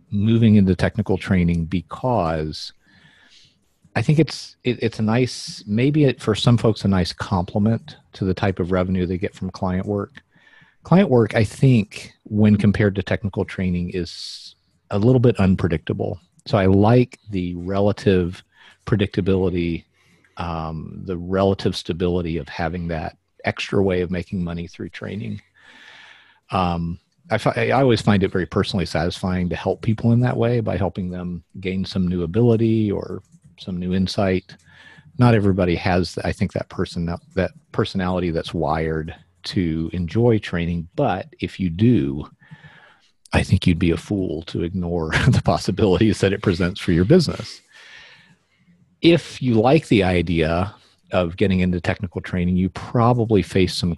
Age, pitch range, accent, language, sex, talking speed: 40-59, 90-110 Hz, American, English, male, 150 wpm